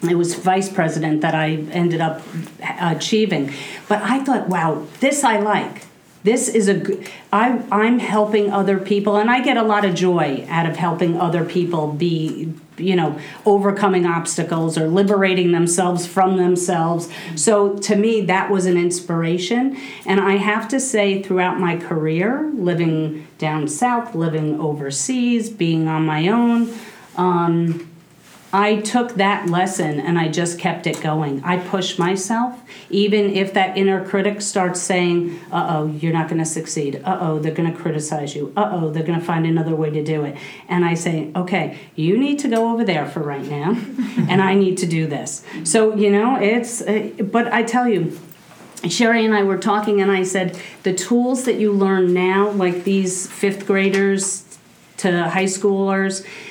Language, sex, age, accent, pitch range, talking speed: English, female, 40-59, American, 165-205 Hz, 170 wpm